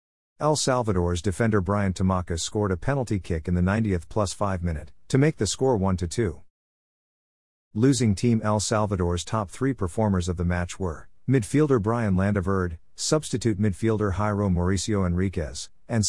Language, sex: English, male